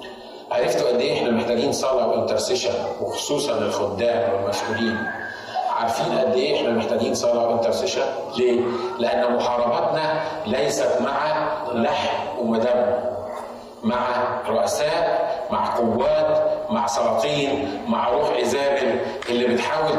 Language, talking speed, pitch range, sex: Arabic, 100 wpm, 125-200 Hz, male